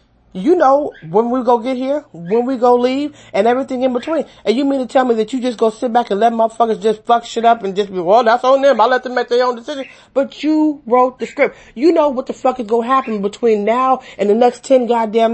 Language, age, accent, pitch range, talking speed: English, 30-49, American, 185-255 Hz, 270 wpm